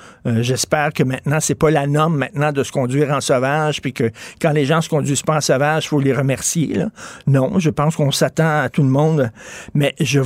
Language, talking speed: French, 230 wpm